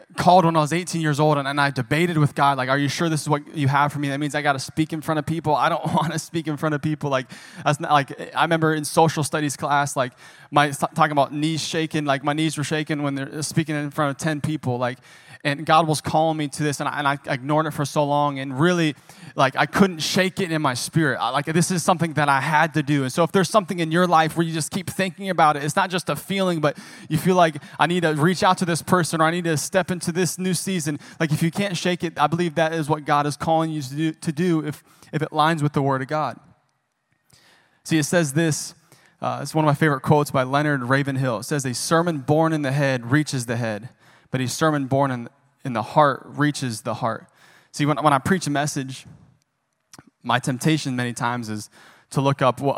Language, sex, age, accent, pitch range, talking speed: English, male, 20-39, American, 135-160 Hz, 260 wpm